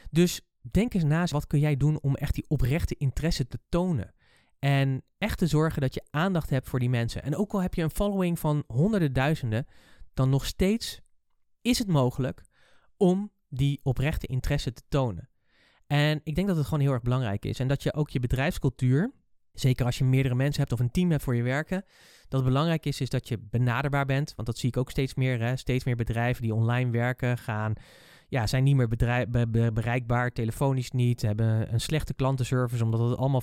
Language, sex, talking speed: Dutch, male, 210 wpm